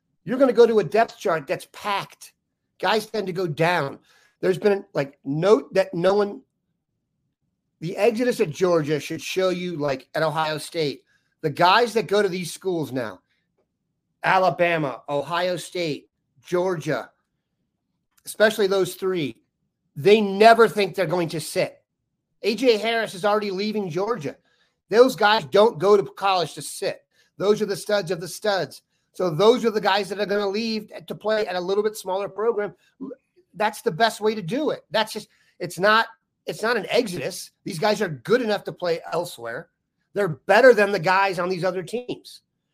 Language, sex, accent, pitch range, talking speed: English, male, American, 170-210 Hz, 175 wpm